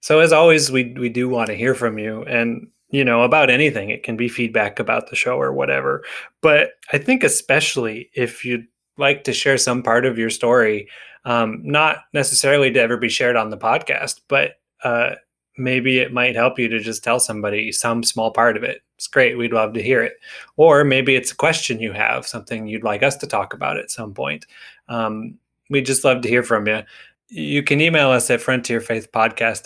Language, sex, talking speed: English, male, 210 wpm